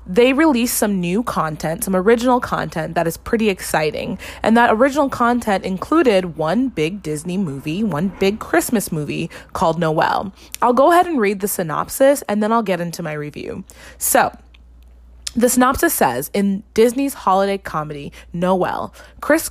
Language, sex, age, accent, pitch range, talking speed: English, female, 20-39, American, 170-240 Hz, 155 wpm